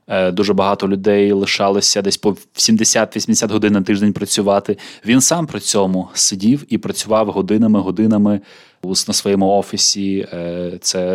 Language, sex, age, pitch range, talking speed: Ukrainian, male, 20-39, 95-120 Hz, 125 wpm